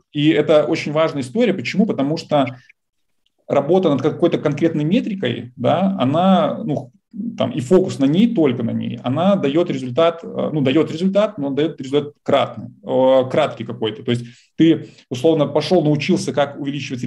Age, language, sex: 30-49, Russian, male